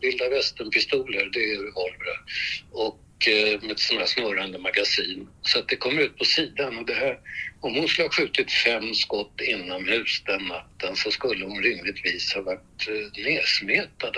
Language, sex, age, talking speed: Swedish, male, 60-79, 175 wpm